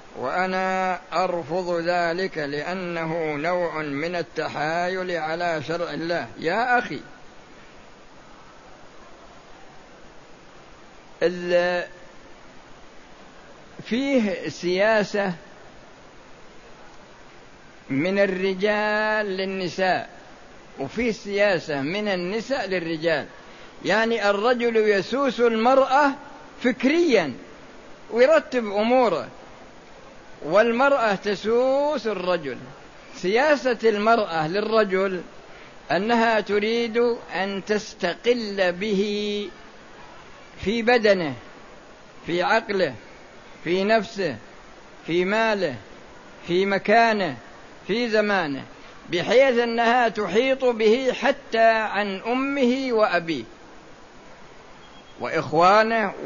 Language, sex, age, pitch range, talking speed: Arabic, male, 60-79, 180-230 Hz, 65 wpm